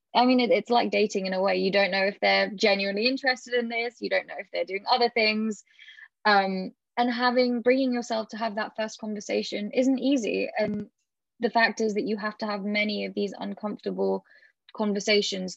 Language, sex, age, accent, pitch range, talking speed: English, female, 20-39, British, 195-230 Hz, 195 wpm